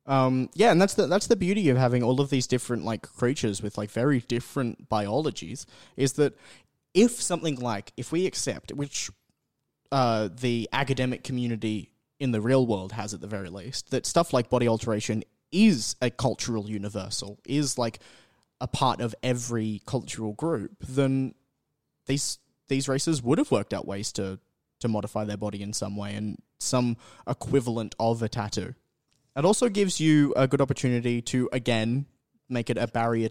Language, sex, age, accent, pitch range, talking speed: English, male, 20-39, Australian, 110-130 Hz, 175 wpm